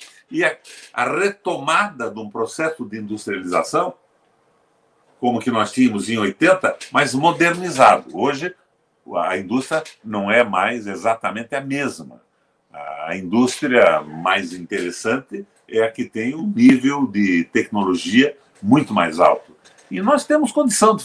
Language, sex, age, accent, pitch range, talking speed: Portuguese, male, 60-79, Brazilian, 110-170 Hz, 130 wpm